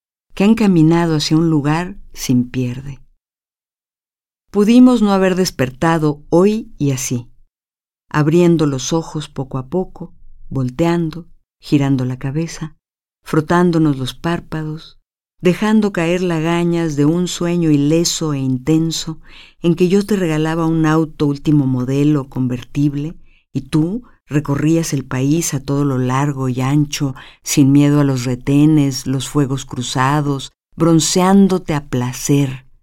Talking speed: 125 wpm